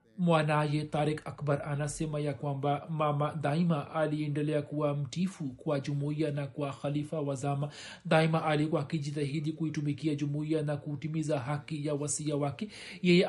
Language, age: Swahili, 40-59